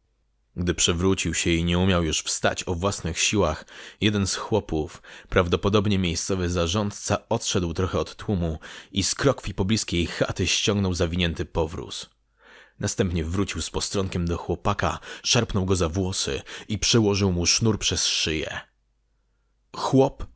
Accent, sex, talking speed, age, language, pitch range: native, male, 135 wpm, 30-49, Polish, 85-105 Hz